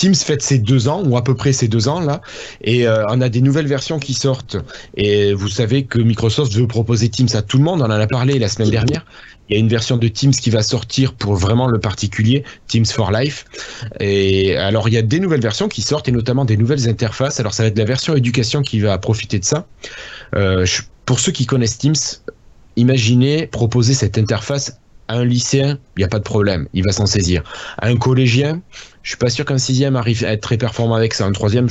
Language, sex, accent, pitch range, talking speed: French, male, French, 105-130 Hz, 235 wpm